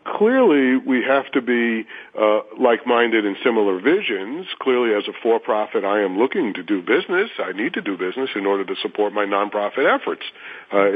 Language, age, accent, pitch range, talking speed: English, 50-69, American, 100-160 Hz, 180 wpm